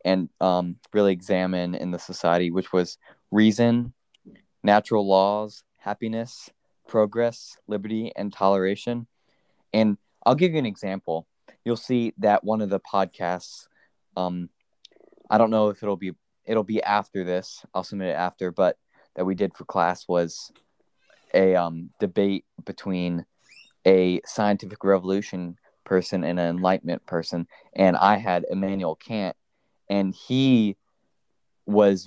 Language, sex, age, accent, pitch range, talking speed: English, male, 20-39, American, 90-110 Hz, 135 wpm